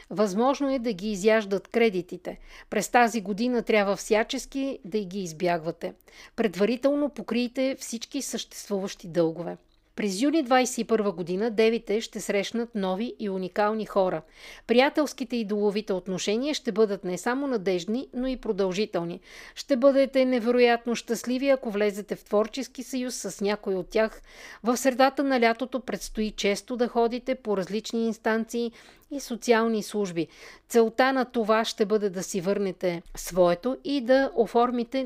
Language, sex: Bulgarian, female